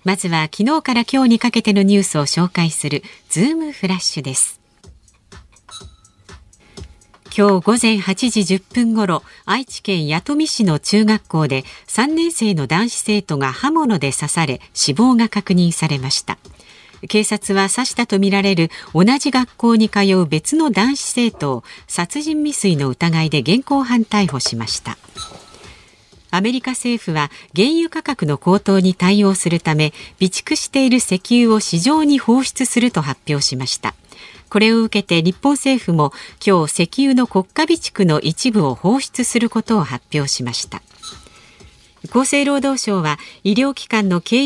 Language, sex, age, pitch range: Japanese, female, 50-69, 160-245 Hz